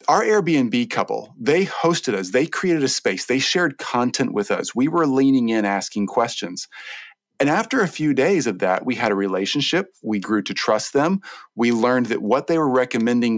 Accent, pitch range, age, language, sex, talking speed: American, 120-185 Hz, 40-59, English, male, 195 wpm